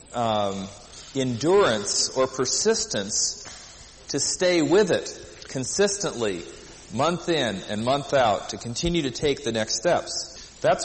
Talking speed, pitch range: 120 wpm, 130-175 Hz